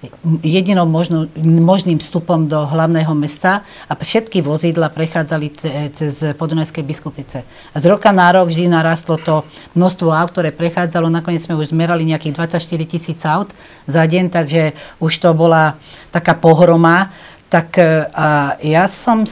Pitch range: 160-195 Hz